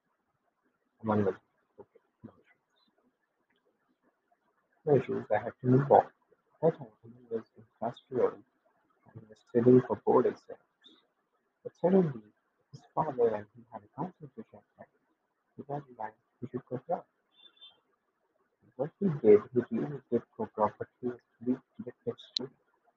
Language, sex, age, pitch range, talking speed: English, male, 50-69, 115-165 Hz, 140 wpm